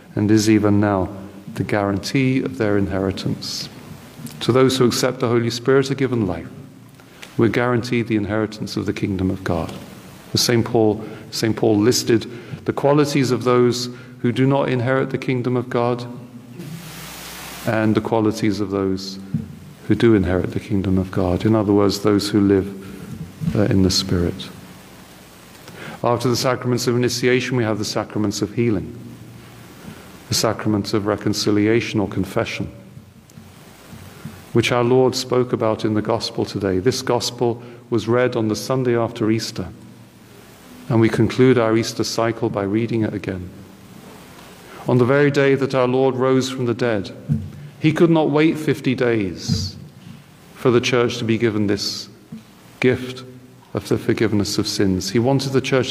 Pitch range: 100-125 Hz